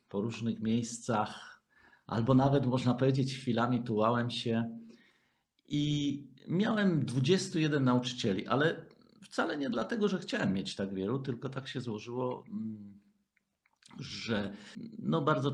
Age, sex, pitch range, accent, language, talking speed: 50-69, male, 110-150 Hz, native, Polish, 110 wpm